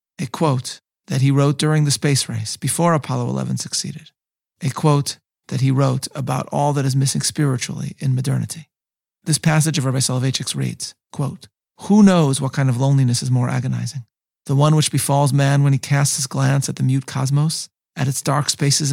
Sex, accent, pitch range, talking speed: male, American, 130-150 Hz, 190 wpm